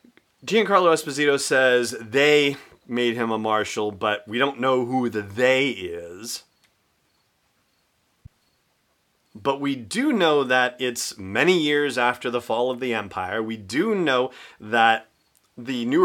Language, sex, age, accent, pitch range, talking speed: English, male, 30-49, American, 110-135 Hz, 135 wpm